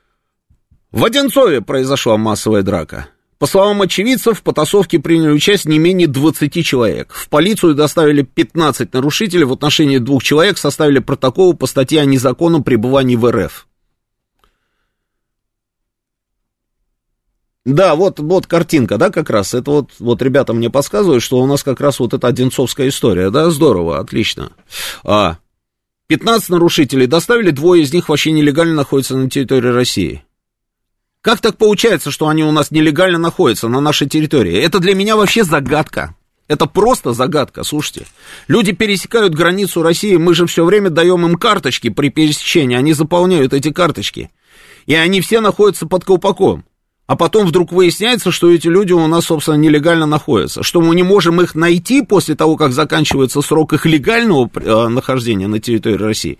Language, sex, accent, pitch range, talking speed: Russian, male, native, 130-175 Hz, 155 wpm